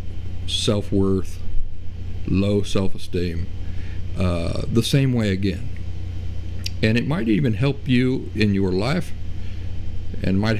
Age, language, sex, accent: 50-69, English, male, American